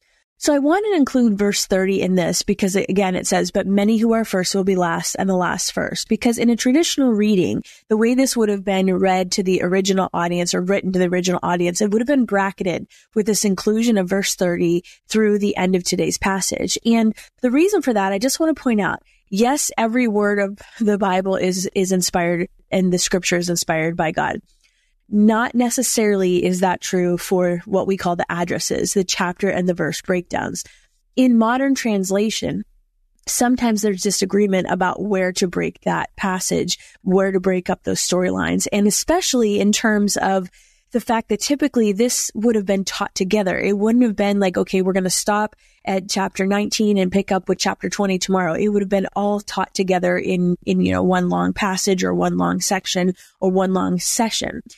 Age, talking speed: 20-39, 200 wpm